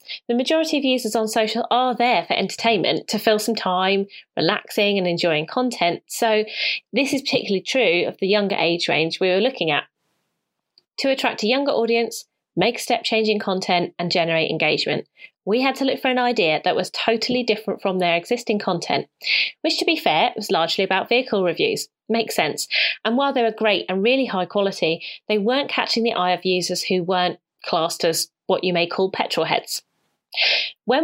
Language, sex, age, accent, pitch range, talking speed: English, female, 30-49, British, 185-245 Hz, 185 wpm